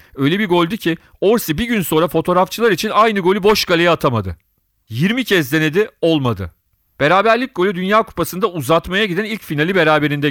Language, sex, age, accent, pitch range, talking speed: Turkish, male, 40-59, native, 135-175 Hz, 165 wpm